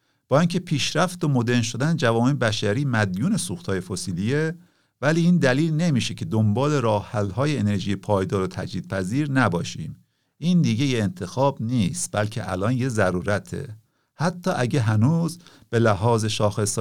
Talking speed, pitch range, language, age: 140 wpm, 105-145 Hz, Persian, 50-69